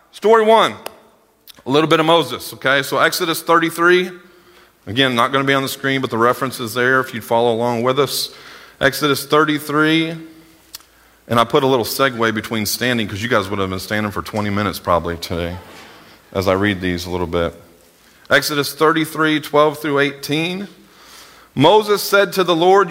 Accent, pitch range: American, 125-170 Hz